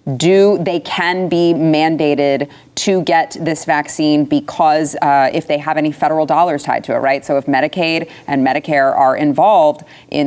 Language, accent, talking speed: English, American, 170 wpm